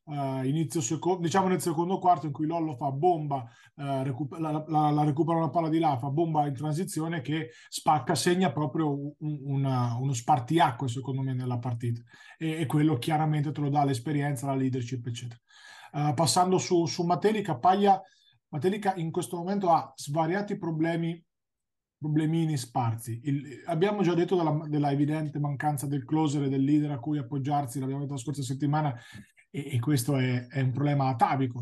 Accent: native